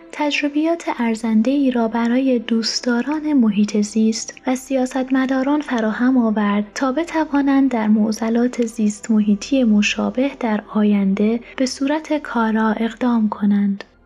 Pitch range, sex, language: 210-260 Hz, female, Persian